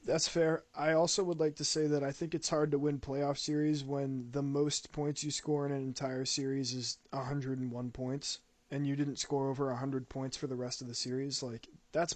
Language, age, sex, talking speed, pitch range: English, 20-39, male, 225 wpm, 125-145 Hz